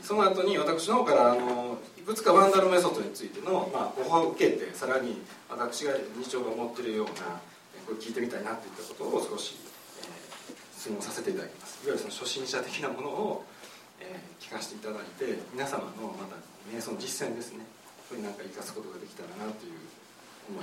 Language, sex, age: Japanese, male, 40-59